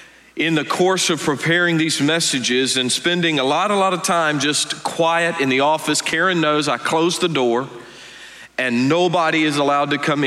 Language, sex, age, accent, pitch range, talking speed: English, male, 40-59, American, 135-175 Hz, 185 wpm